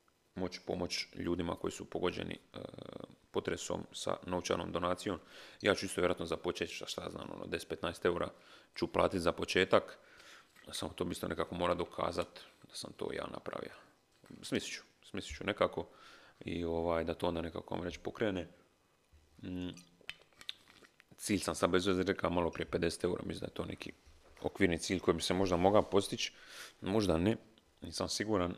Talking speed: 155 wpm